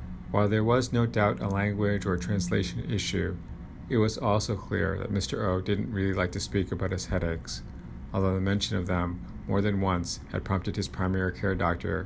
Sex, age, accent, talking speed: male, 50-69, American, 195 wpm